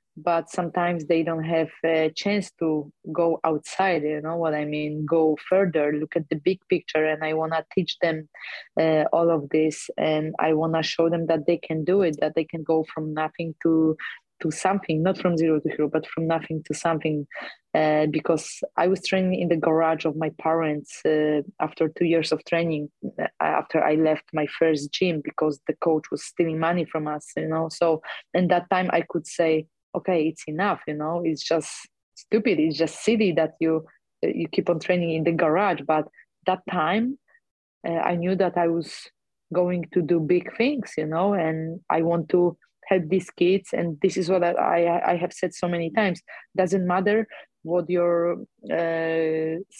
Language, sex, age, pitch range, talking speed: English, female, 20-39, 155-180 Hz, 195 wpm